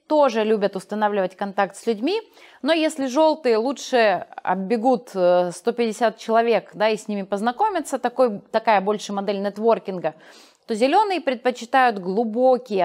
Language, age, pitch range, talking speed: Russian, 30-49, 205-260 Hz, 115 wpm